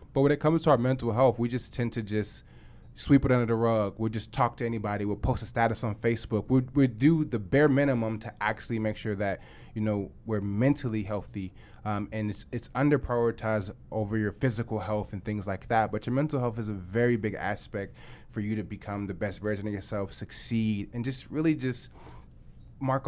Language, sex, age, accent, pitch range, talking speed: English, male, 20-39, American, 105-125 Hz, 220 wpm